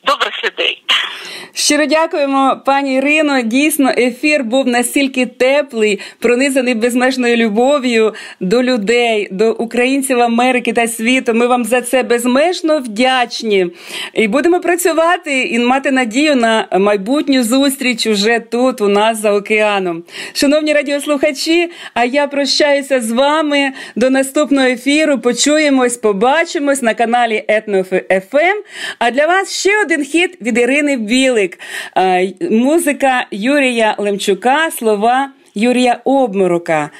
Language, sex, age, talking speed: Russian, female, 40-59, 105 wpm